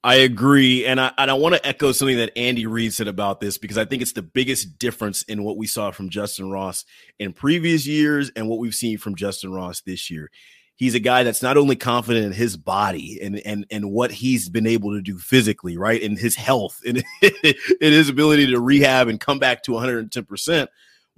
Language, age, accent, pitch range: English, 30-49, American, 115-155 Hz